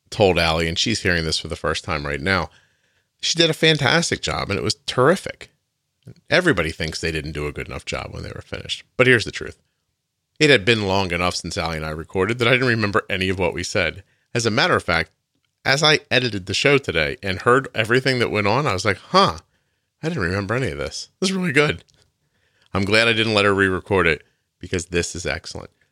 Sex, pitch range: male, 90-120 Hz